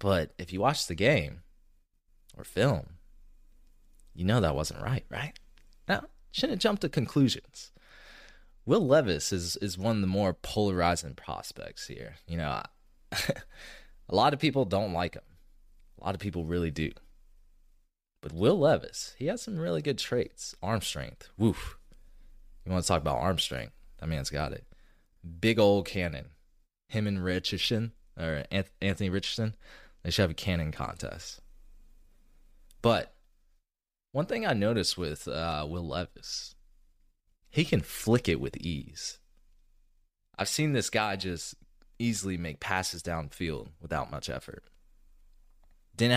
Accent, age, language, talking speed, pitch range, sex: American, 20-39, English, 145 wpm, 80-100 Hz, male